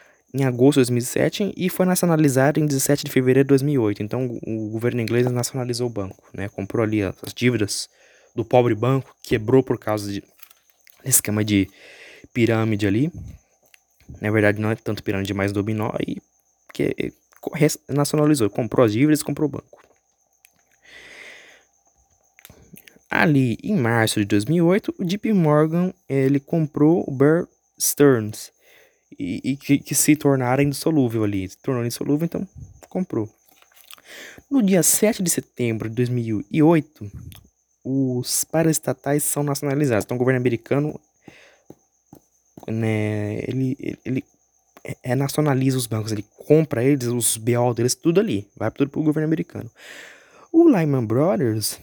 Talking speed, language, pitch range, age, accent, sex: 140 wpm, Portuguese, 110-150 Hz, 20-39, Brazilian, male